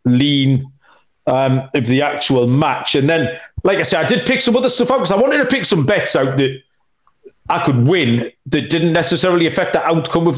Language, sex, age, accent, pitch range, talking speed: English, male, 30-49, British, 130-165 Hz, 215 wpm